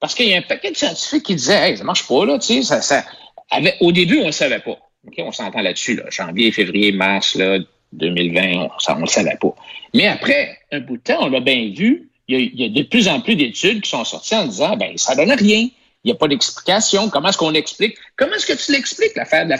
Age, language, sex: 60-79, French, male